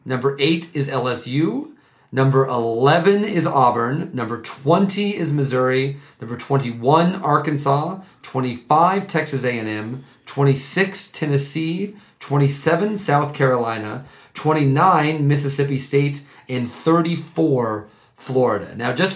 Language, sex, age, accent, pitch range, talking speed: English, male, 30-49, American, 135-170 Hz, 95 wpm